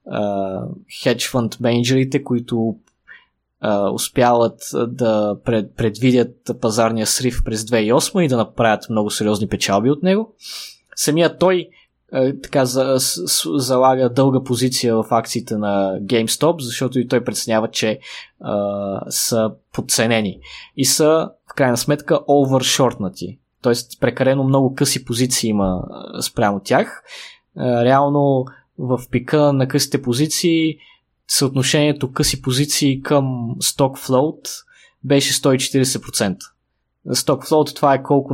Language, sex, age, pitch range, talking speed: Bulgarian, male, 20-39, 115-145 Hz, 115 wpm